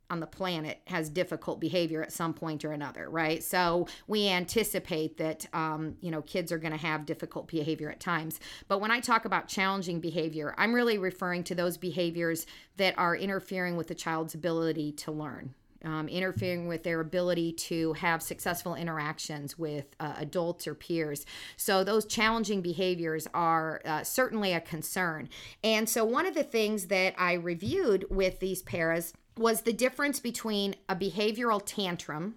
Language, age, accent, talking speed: English, 50-69, American, 170 wpm